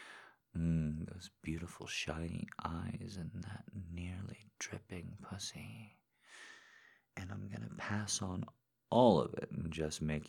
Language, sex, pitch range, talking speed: English, male, 75-90 Hz, 120 wpm